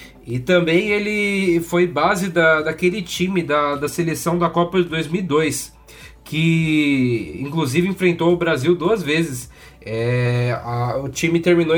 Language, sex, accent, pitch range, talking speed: Portuguese, male, Brazilian, 135-175 Hz, 120 wpm